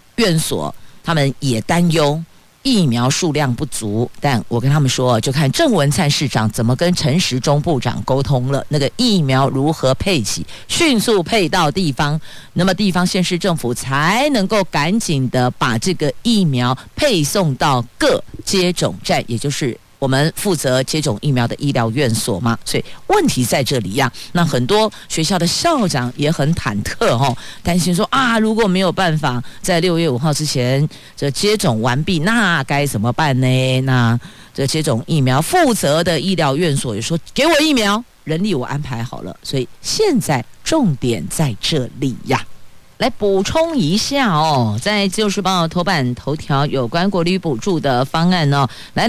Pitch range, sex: 135-195 Hz, female